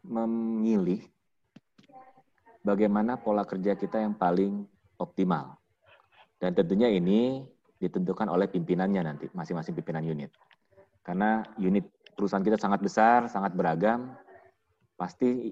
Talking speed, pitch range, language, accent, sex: 105 wpm, 90-120 Hz, Indonesian, native, male